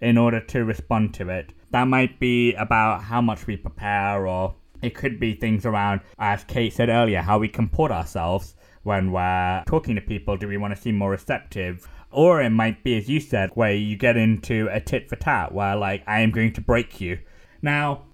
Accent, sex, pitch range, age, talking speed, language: British, male, 100-130 Hz, 20-39, 210 wpm, English